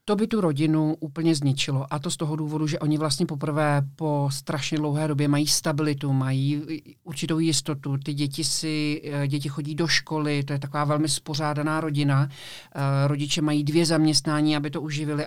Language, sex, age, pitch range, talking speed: Czech, male, 50-69, 145-160 Hz, 175 wpm